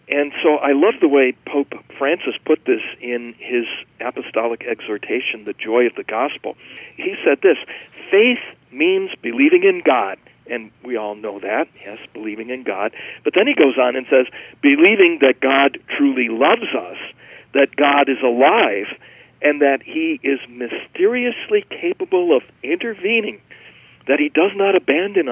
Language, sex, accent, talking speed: English, male, American, 155 wpm